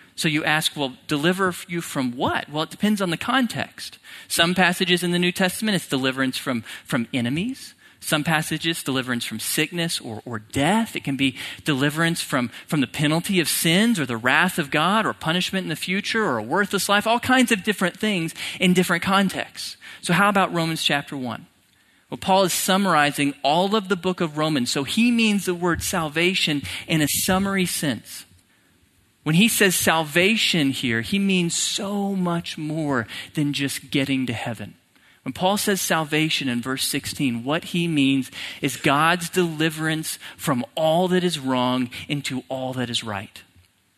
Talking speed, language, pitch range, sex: 175 wpm, English, 140-185 Hz, male